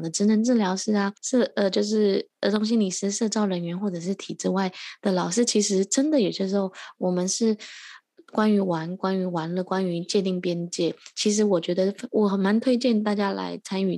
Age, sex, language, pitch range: 20-39, female, Chinese, 185-230 Hz